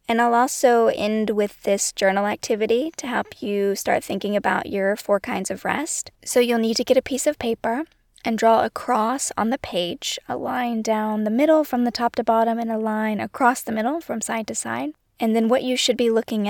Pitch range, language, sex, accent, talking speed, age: 205-245 Hz, English, female, American, 225 wpm, 20-39